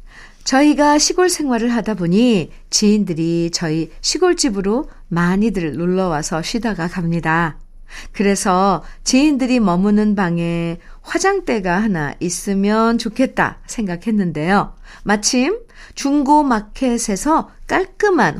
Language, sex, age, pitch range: Korean, female, 50-69, 185-275 Hz